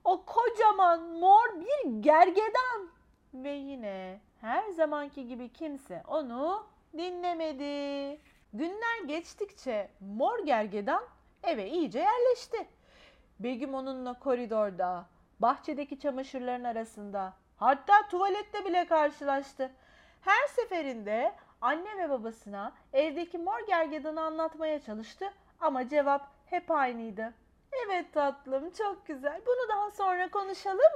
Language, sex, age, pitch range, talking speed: Turkish, female, 40-59, 235-335 Hz, 100 wpm